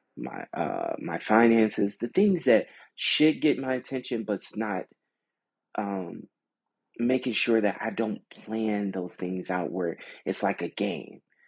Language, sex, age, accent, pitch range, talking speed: English, male, 30-49, American, 95-130 Hz, 150 wpm